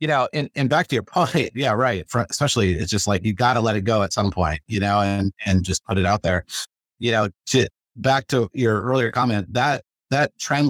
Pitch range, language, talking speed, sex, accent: 100-125 Hz, English, 240 wpm, male, American